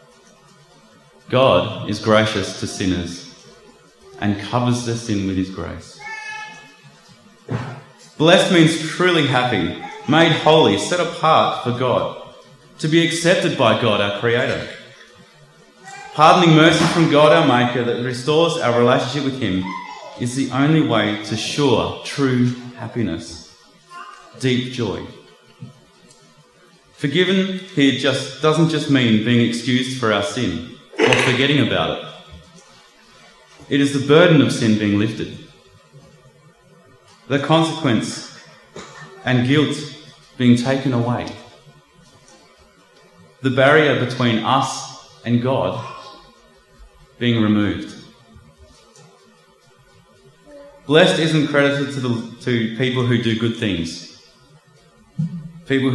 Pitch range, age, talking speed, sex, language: 115-155 Hz, 30-49, 105 wpm, male, English